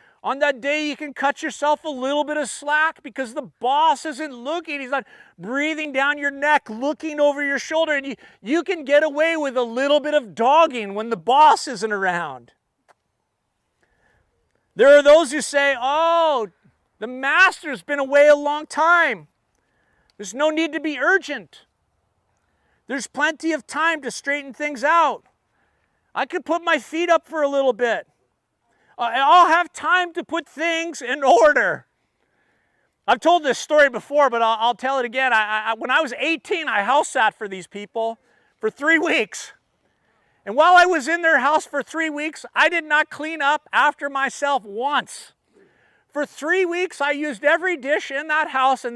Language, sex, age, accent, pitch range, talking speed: English, male, 40-59, American, 265-325 Hz, 180 wpm